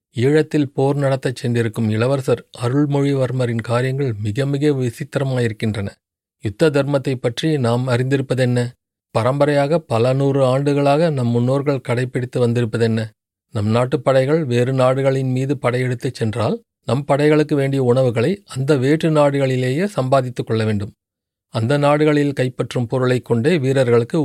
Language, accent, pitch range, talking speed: Tamil, native, 120-145 Hz, 115 wpm